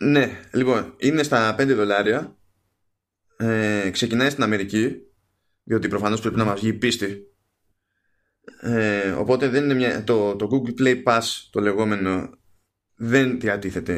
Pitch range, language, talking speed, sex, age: 100-135 Hz, Greek, 135 wpm, male, 20-39